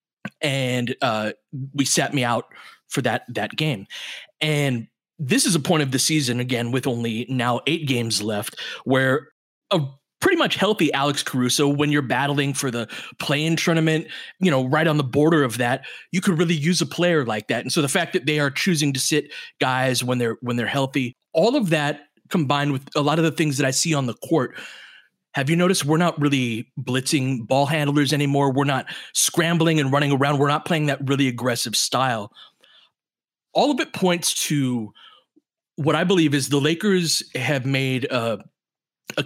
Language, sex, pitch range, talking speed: English, male, 130-160 Hz, 190 wpm